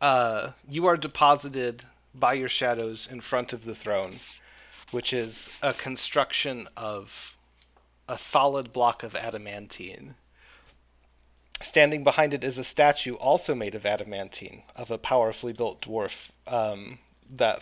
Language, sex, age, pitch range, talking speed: English, male, 30-49, 100-140 Hz, 135 wpm